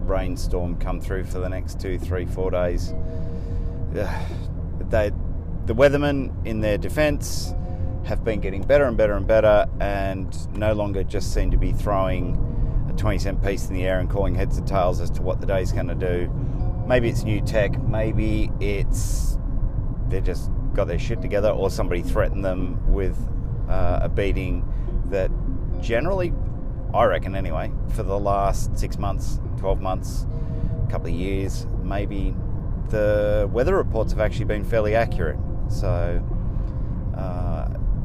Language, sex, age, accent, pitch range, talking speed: English, male, 30-49, Australian, 90-110 Hz, 160 wpm